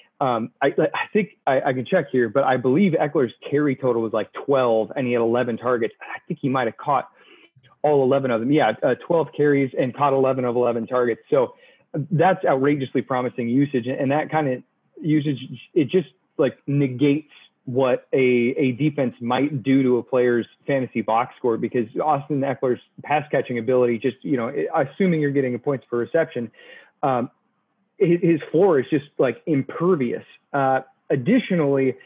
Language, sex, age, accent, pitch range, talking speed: English, male, 30-49, American, 125-150 Hz, 175 wpm